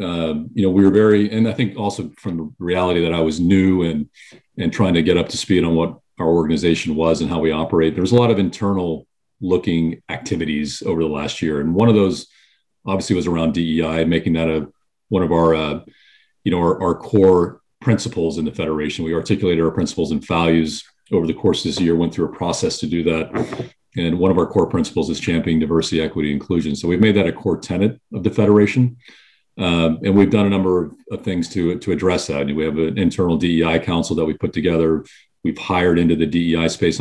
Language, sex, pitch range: English, male, 80-95 Hz